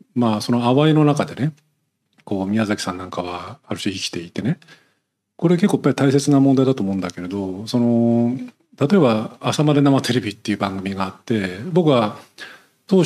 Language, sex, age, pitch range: Japanese, male, 40-59, 100-145 Hz